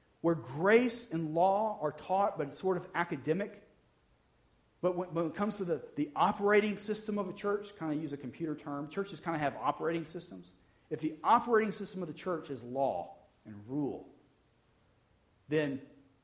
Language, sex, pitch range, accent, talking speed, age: English, male, 120-180 Hz, American, 175 wpm, 40-59